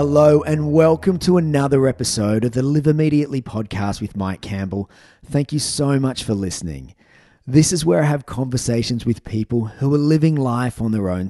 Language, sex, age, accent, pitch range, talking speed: English, male, 30-49, Australian, 110-140 Hz, 185 wpm